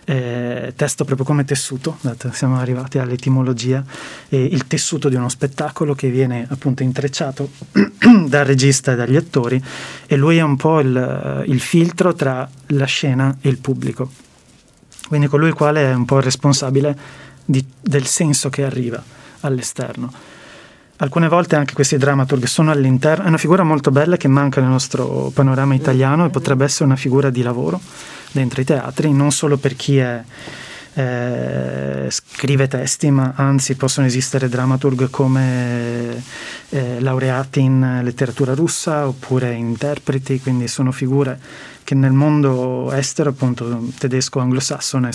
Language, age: Italian, 30-49